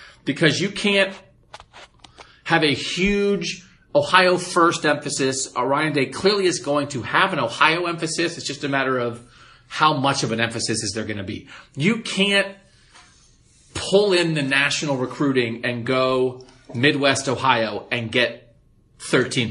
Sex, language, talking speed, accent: male, English, 150 wpm, American